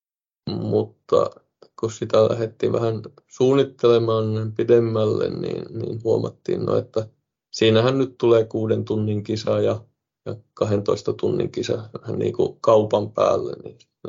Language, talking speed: Finnish, 120 wpm